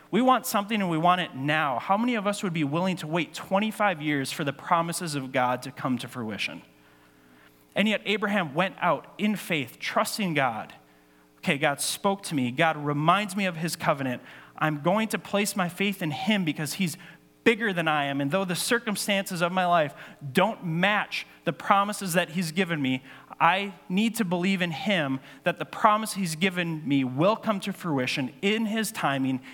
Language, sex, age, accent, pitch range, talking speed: English, male, 30-49, American, 145-195 Hz, 195 wpm